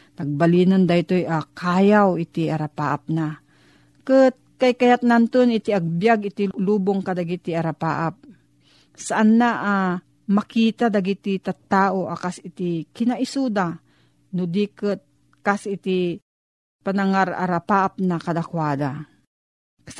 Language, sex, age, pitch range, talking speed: Filipino, female, 40-59, 175-225 Hz, 105 wpm